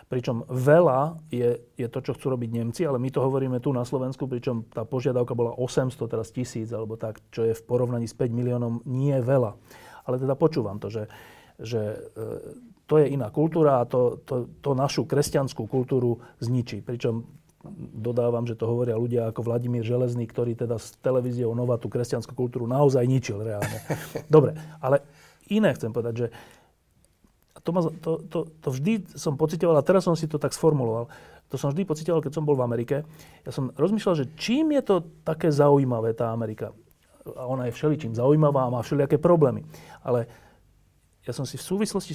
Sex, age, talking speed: male, 40-59, 180 wpm